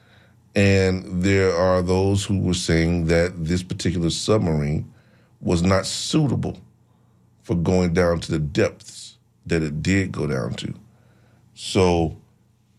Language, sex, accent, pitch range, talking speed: English, male, American, 80-100 Hz, 125 wpm